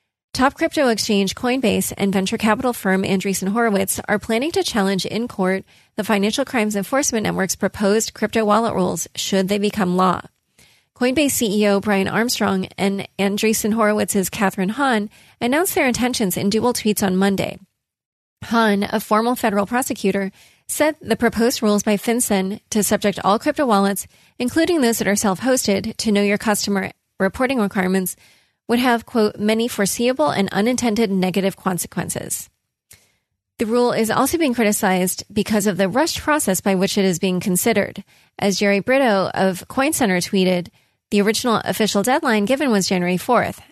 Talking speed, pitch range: 155 wpm, 195-235 Hz